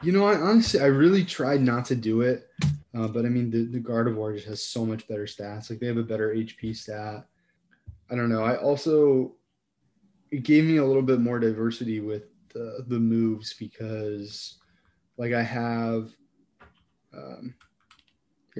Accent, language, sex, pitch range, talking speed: American, English, male, 110-130 Hz, 175 wpm